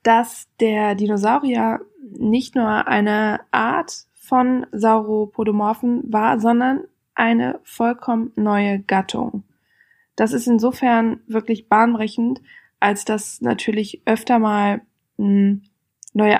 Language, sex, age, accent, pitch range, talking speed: German, female, 20-39, German, 205-240 Hz, 95 wpm